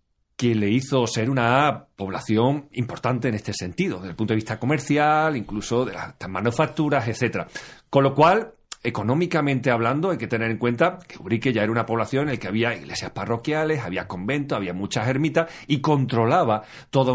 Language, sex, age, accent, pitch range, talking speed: Spanish, male, 40-59, Spanish, 105-135 Hz, 180 wpm